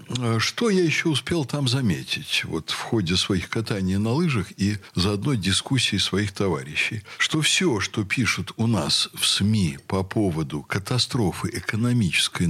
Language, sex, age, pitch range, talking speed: Russian, male, 60-79, 95-135 Hz, 150 wpm